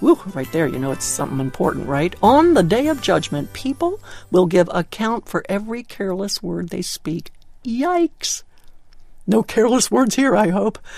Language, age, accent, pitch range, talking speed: English, 60-79, American, 165-265 Hz, 170 wpm